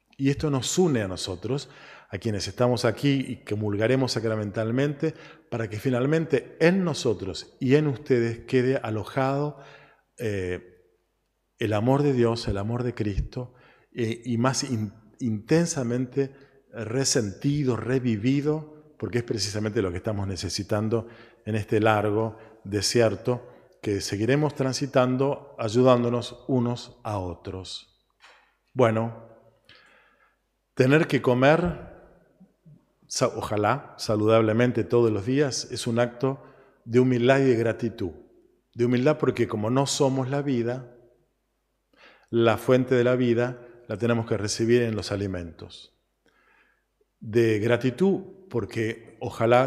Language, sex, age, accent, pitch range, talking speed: Spanish, male, 40-59, Argentinian, 110-130 Hz, 120 wpm